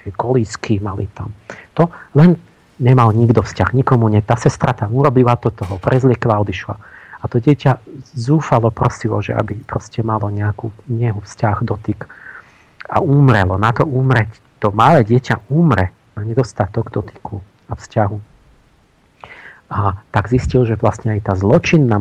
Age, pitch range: 40-59, 105-125 Hz